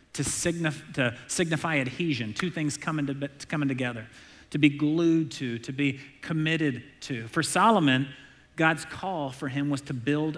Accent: American